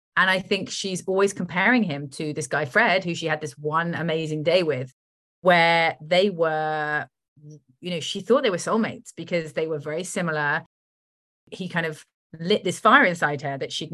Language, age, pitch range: English, 30-49, 150-180 Hz